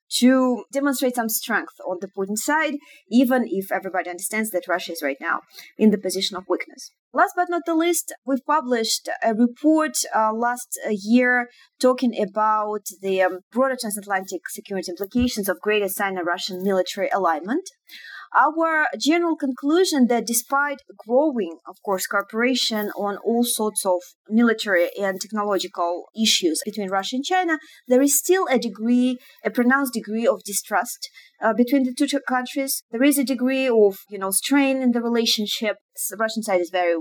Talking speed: 160 wpm